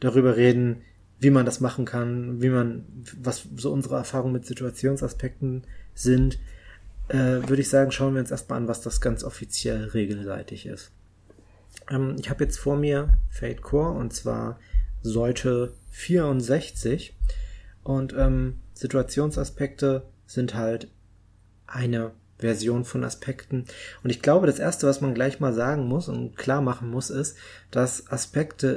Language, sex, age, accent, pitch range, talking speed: German, male, 20-39, German, 110-135 Hz, 145 wpm